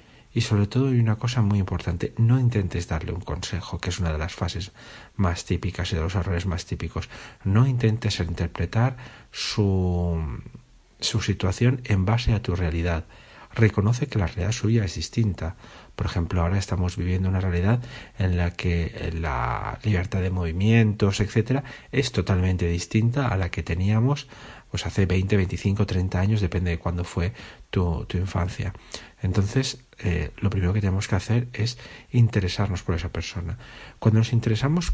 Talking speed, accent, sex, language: 165 wpm, Spanish, male, Spanish